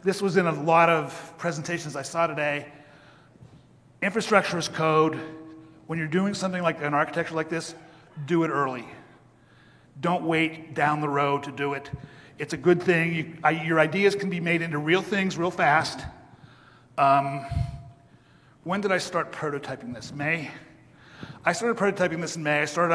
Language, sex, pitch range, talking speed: English, male, 145-170 Hz, 165 wpm